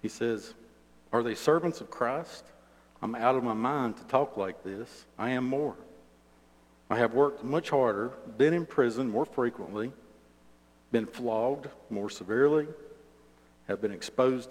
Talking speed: 150 wpm